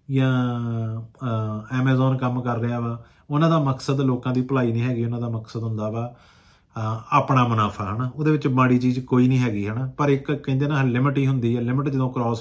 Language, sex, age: Punjabi, male, 30-49